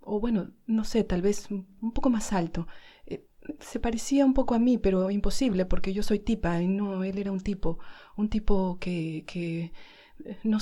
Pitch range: 165-215 Hz